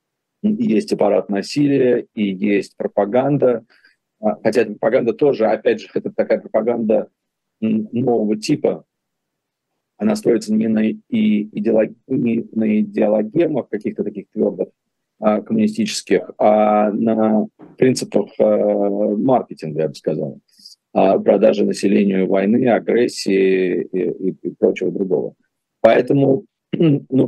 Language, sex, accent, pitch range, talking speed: Russian, male, native, 105-135 Hz, 100 wpm